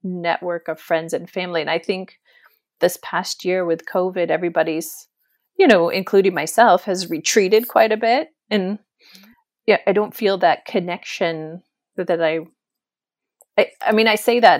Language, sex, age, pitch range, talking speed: English, female, 30-49, 170-220 Hz, 155 wpm